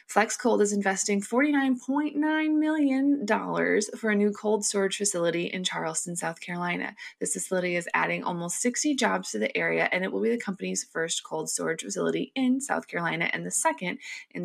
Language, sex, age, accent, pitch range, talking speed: English, female, 20-39, American, 175-225 Hz, 175 wpm